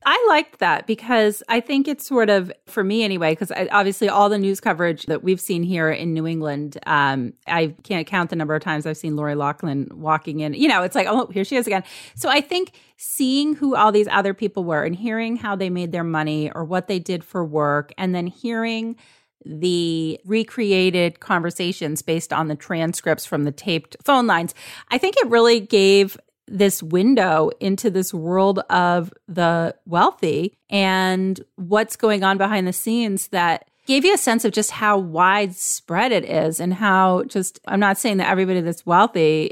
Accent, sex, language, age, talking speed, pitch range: American, female, English, 30-49, 195 wpm, 170-215 Hz